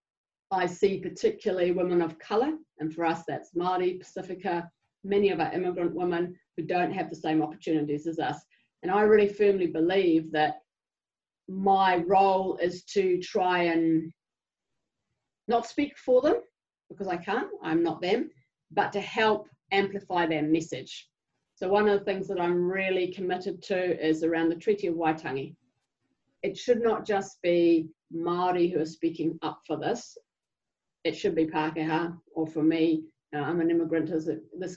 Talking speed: 160 wpm